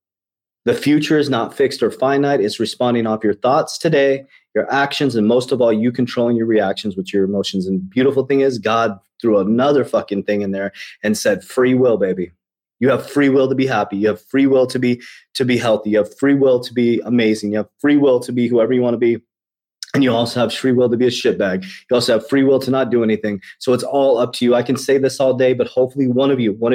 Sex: male